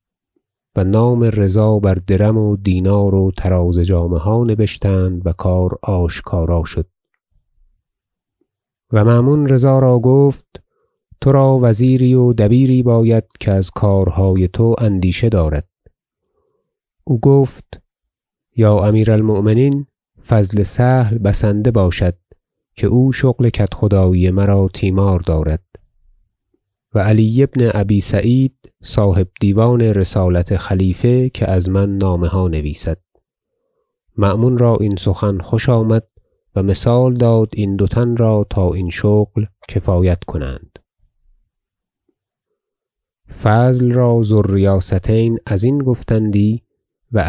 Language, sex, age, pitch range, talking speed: Persian, male, 30-49, 95-120 Hz, 110 wpm